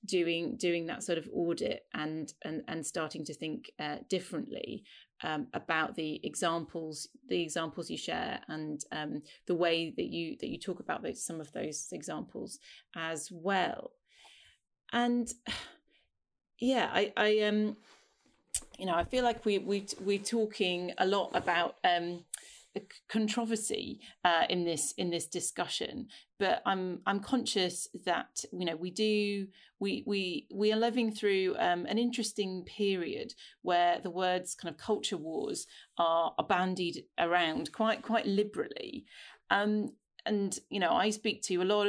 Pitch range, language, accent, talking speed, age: 175-220 Hz, English, British, 155 wpm, 30-49